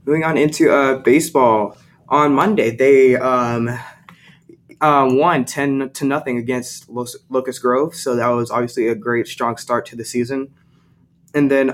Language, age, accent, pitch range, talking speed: English, 20-39, American, 120-140 Hz, 160 wpm